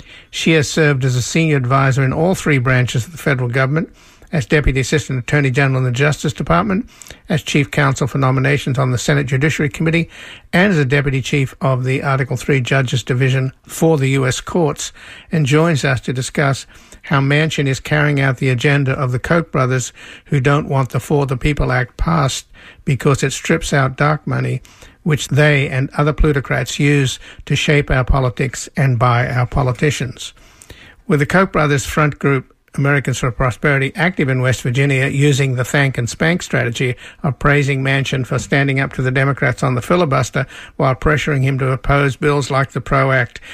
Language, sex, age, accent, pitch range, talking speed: English, male, 50-69, American, 130-145 Hz, 185 wpm